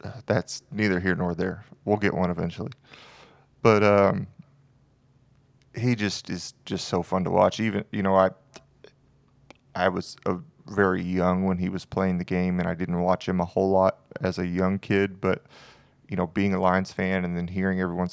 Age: 30-49